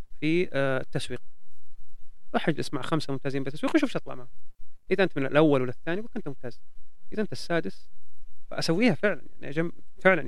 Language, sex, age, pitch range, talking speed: English, male, 30-49, 130-180 Hz, 160 wpm